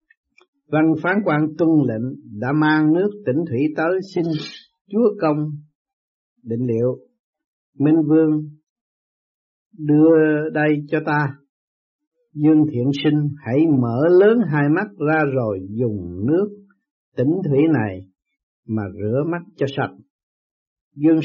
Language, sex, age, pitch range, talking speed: Vietnamese, male, 60-79, 130-160 Hz, 120 wpm